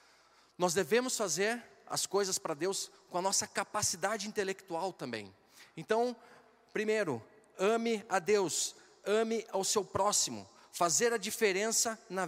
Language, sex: Portuguese, male